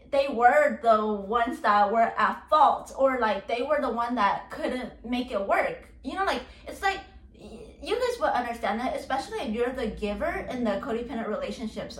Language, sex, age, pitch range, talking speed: English, female, 20-39, 215-270 Hz, 190 wpm